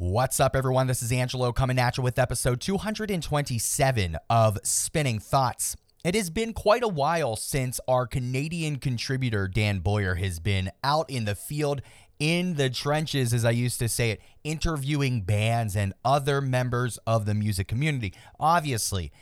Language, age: English, 30-49